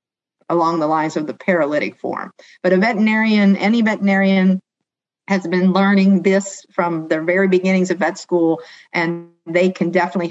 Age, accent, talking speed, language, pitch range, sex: 50-69, American, 155 wpm, English, 175-200 Hz, female